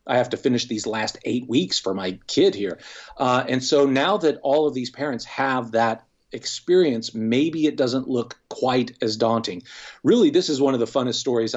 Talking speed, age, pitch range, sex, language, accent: 200 wpm, 40-59, 115-135 Hz, male, English, American